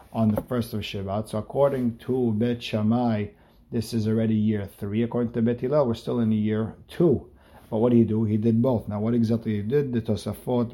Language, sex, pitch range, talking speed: English, male, 105-120 Hz, 210 wpm